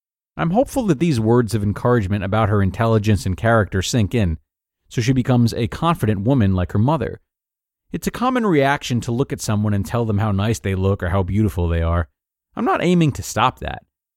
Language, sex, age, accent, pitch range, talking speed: English, male, 30-49, American, 100-135 Hz, 210 wpm